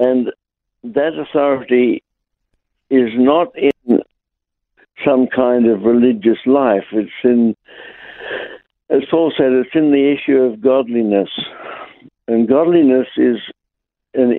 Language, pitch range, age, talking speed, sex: English, 115-135 Hz, 60-79, 110 wpm, male